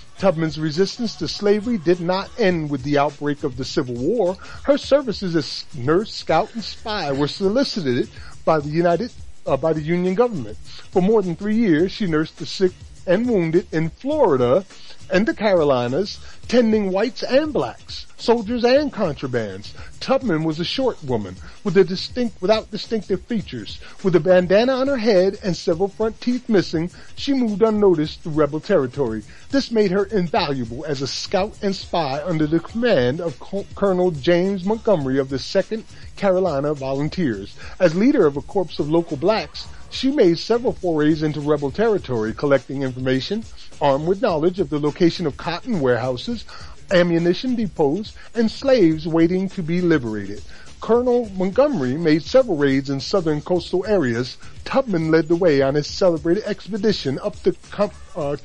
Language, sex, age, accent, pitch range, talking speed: English, male, 40-59, American, 150-210 Hz, 160 wpm